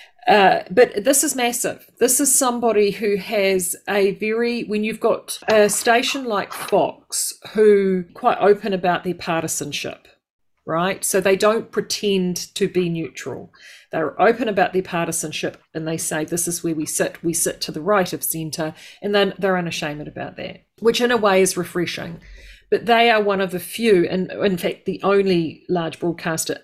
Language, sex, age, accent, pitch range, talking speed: English, female, 40-59, Australian, 170-210 Hz, 180 wpm